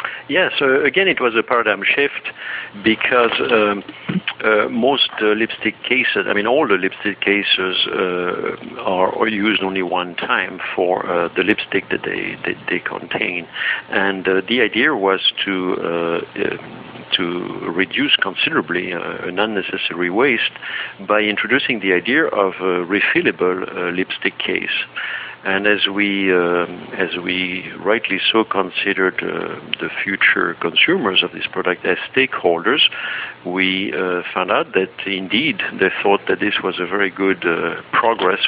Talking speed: 150 wpm